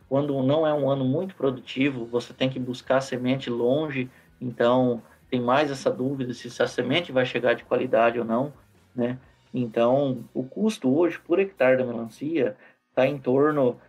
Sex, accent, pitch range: male, Brazilian, 120-145 Hz